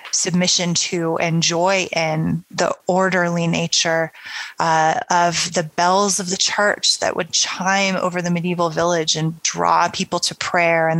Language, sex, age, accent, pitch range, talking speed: English, female, 20-39, American, 170-190 Hz, 155 wpm